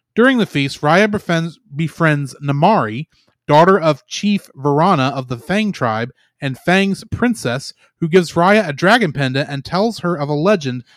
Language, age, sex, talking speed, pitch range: English, 30-49, male, 165 wpm, 150-215 Hz